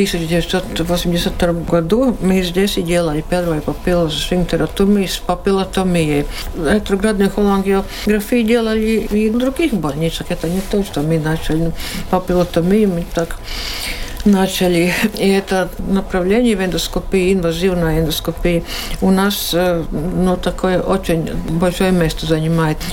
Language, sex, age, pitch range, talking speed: Russian, female, 60-79, 170-200 Hz, 110 wpm